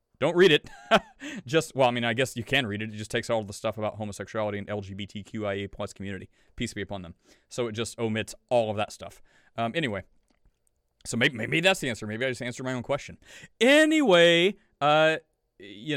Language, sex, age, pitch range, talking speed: English, male, 30-49, 110-135 Hz, 205 wpm